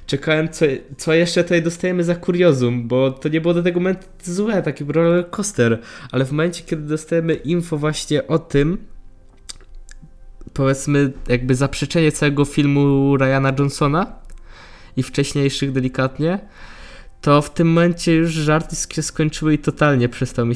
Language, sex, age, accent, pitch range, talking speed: Polish, male, 20-39, native, 130-155 Hz, 145 wpm